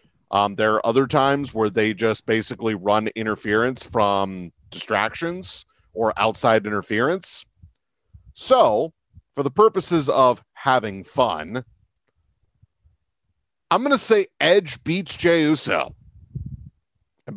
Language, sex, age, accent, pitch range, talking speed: English, male, 40-59, American, 105-135 Hz, 110 wpm